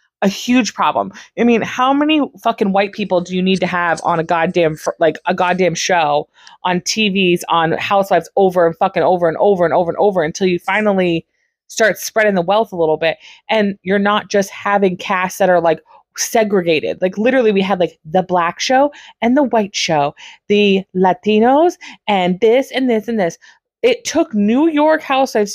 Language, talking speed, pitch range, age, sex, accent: English, 190 wpm, 180-275 Hz, 20-39, female, American